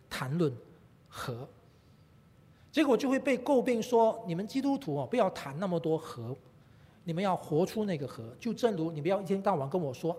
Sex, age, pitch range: male, 40-59, 150-235 Hz